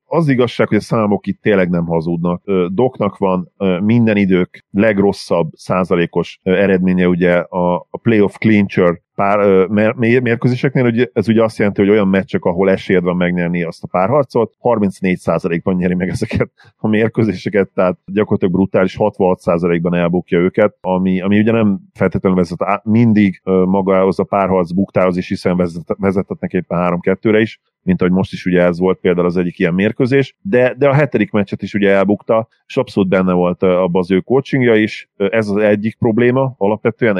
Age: 40-59